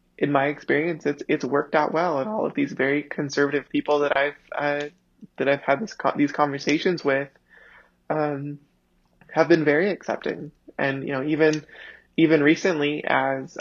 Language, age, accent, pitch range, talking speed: English, 20-39, American, 140-160 Hz, 170 wpm